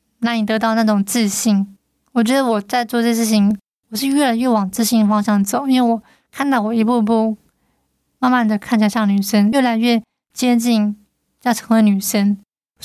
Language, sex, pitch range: Chinese, female, 215-240 Hz